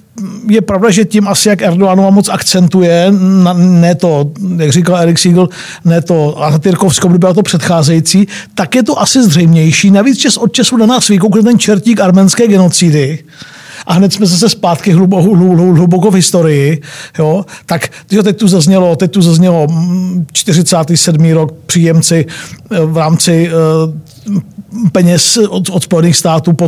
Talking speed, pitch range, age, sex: 155 wpm, 165-200 Hz, 50-69, male